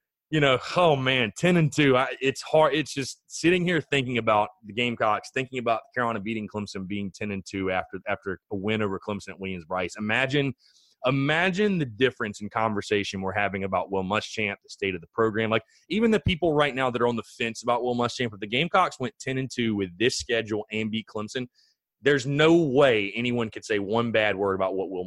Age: 30-49